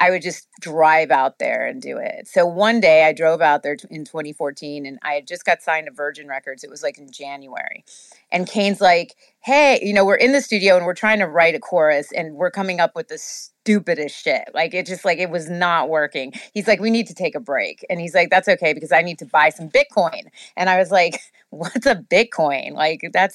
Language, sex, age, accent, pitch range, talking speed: English, female, 30-49, American, 155-205 Hz, 240 wpm